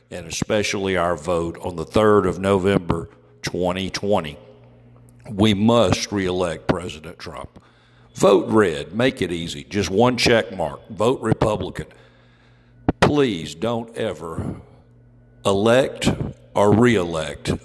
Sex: male